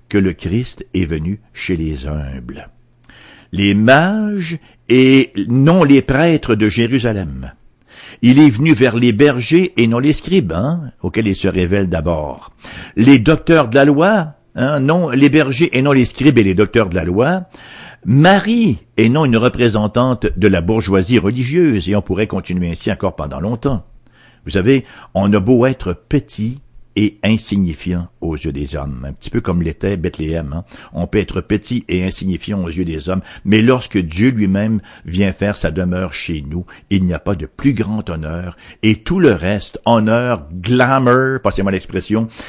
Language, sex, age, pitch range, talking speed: English, male, 60-79, 90-130 Hz, 175 wpm